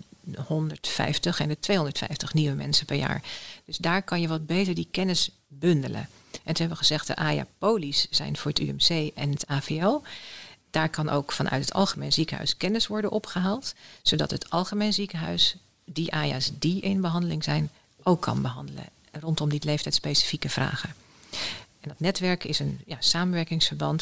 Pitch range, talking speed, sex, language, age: 150-180 Hz, 160 wpm, female, Dutch, 40-59